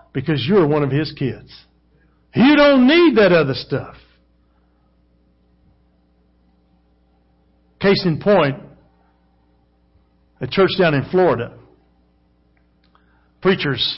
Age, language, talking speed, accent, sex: 50-69, English, 90 wpm, American, male